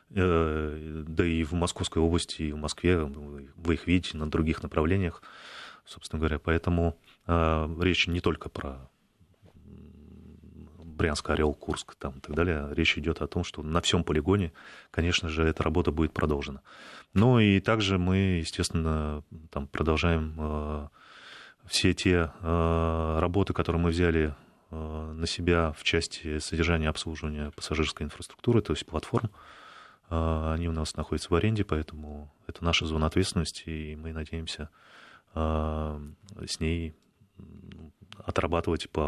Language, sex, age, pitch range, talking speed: Russian, male, 30-49, 80-90 Hz, 135 wpm